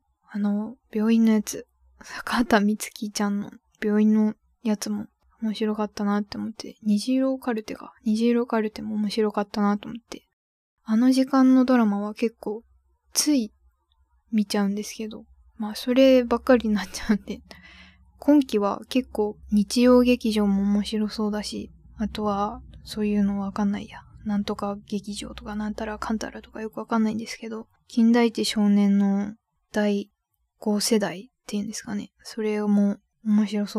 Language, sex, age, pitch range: Japanese, female, 10-29, 205-230 Hz